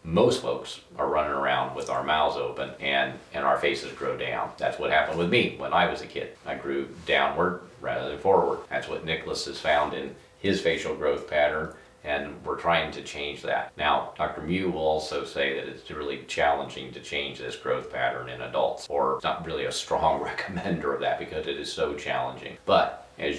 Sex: male